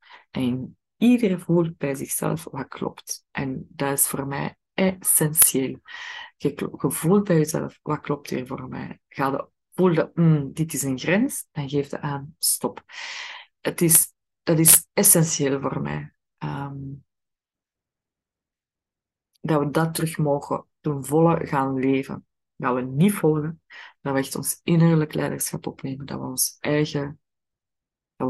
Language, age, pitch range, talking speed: Dutch, 20-39, 140-175 Hz, 145 wpm